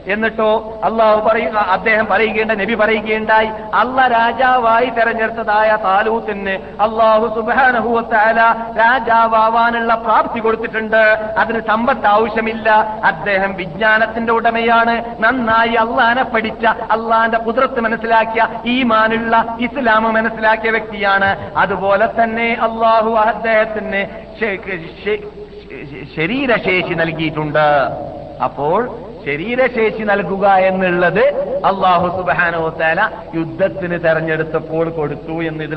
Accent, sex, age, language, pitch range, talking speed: native, male, 50-69, Malayalam, 190-230 Hz, 85 wpm